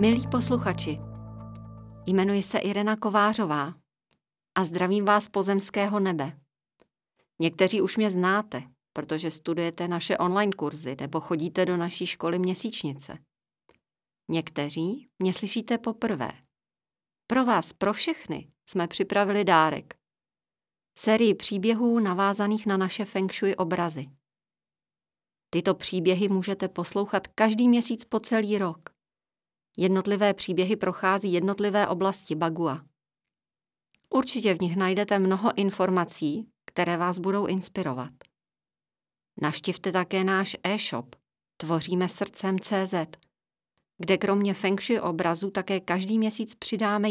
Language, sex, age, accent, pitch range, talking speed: Czech, female, 40-59, native, 170-205 Hz, 110 wpm